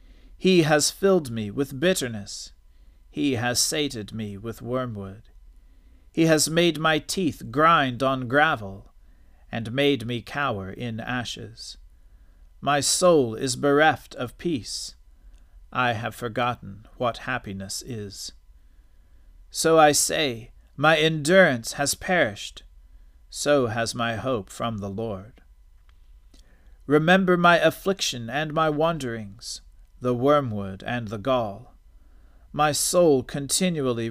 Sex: male